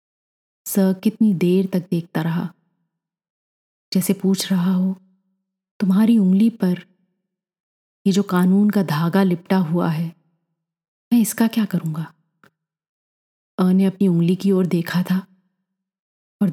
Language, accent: Hindi, native